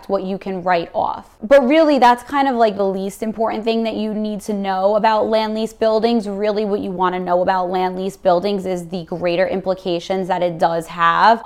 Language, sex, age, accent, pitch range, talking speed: English, female, 20-39, American, 185-220 Hz, 220 wpm